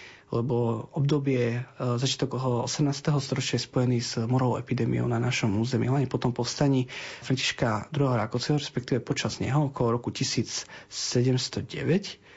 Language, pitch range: Slovak, 120-140 Hz